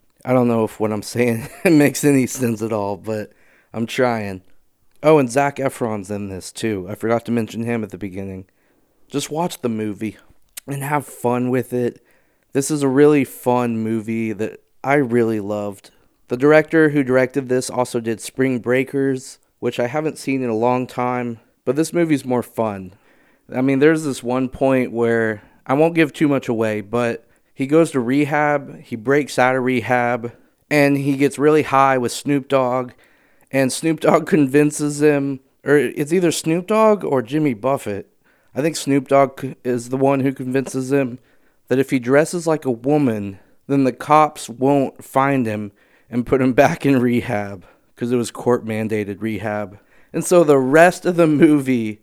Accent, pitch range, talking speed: American, 115-145 Hz, 180 wpm